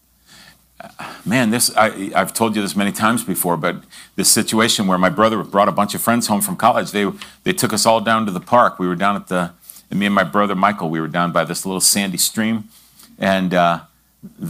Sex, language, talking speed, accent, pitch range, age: male, English, 225 wpm, American, 100-140 Hz, 50-69